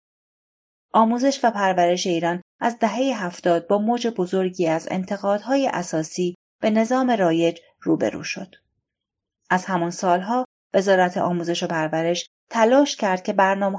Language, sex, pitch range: Persian, female, 170-230 Hz